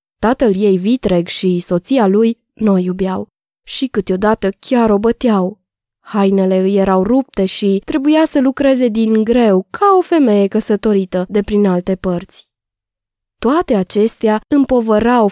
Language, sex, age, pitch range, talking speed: Romanian, female, 20-39, 195-250 Hz, 135 wpm